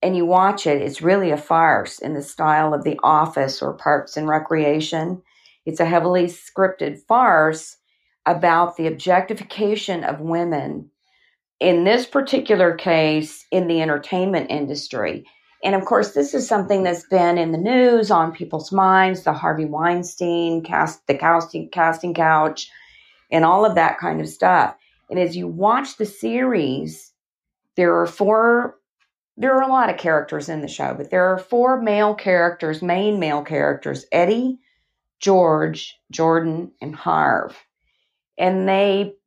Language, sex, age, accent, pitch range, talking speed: English, female, 50-69, American, 160-200 Hz, 150 wpm